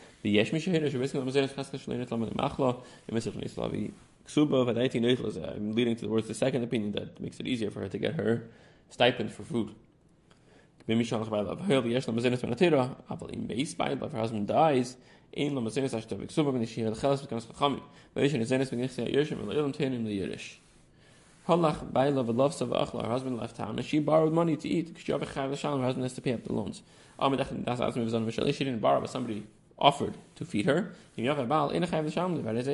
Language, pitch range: English, 120-150 Hz